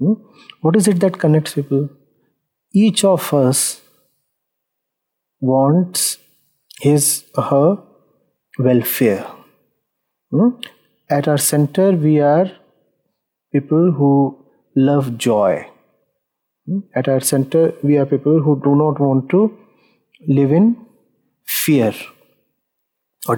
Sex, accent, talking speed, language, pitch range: male, Indian, 100 wpm, English, 140-195 Hz